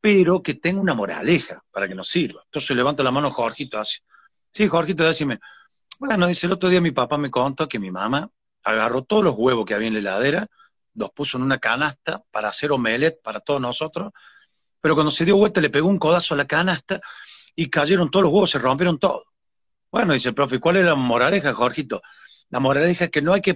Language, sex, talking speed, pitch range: Spanish, male, 220 wpm, 130-180 Hz